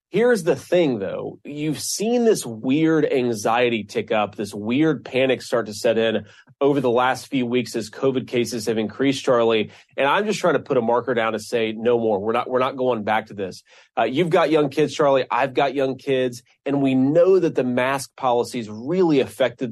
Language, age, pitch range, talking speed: English, 30-49, 115-140 Hz, 210 wpm